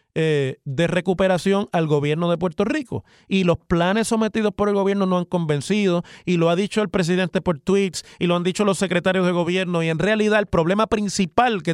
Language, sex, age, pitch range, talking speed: Spanish, male, 30-49, 165-205 Hz, 205 wpm